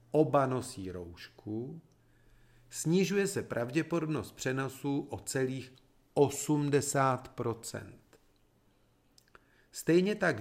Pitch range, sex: 115-150 Hz, male